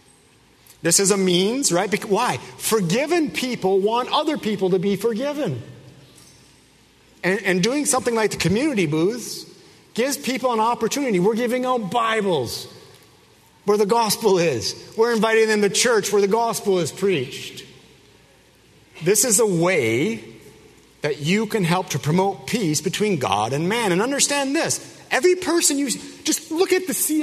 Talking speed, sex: 155 wpm, male